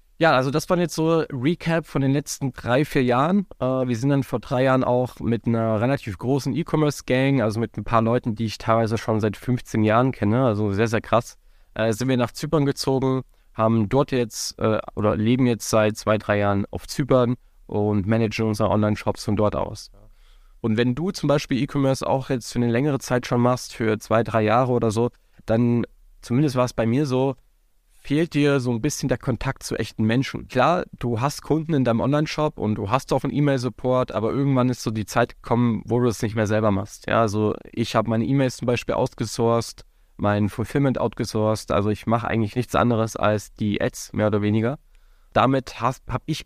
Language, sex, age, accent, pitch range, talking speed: German, male, 20-39, German, 110-135 Hz, 205 wpm